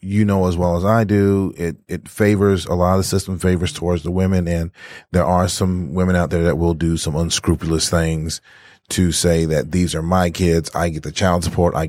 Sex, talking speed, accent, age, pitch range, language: male, 225 wpm, American, 30-49, 85-95 Hz, English